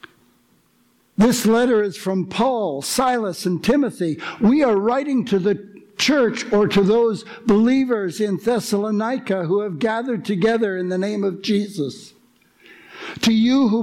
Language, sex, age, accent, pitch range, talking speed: English, male, 60-79, American, 180-225 Hz, 140 wpm